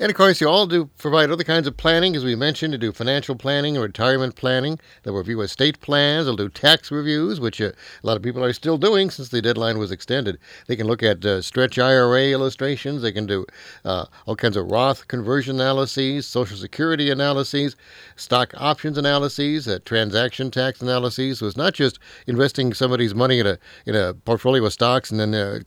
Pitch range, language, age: 110-140 Hz, English, 60-79